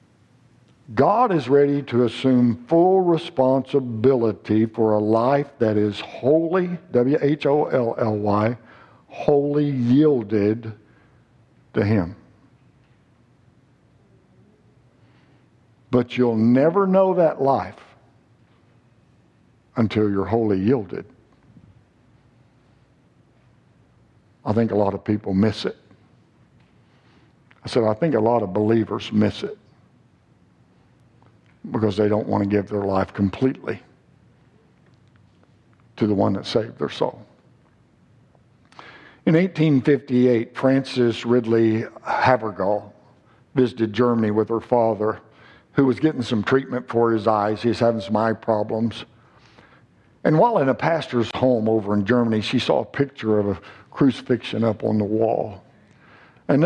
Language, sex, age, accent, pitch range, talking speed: English, male, 60-79, American, 110-130 Hz, 115 wpm